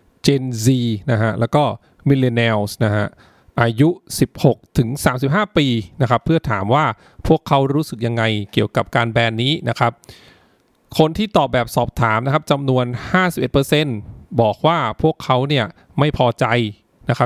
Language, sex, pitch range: English, male, 115-145 Hz